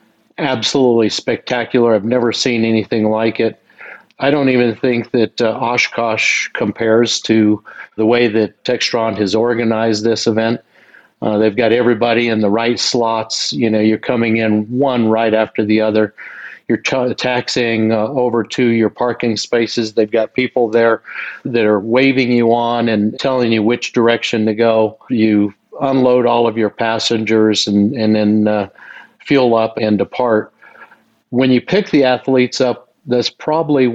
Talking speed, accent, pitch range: 155 wpm, American, 110-125 Hz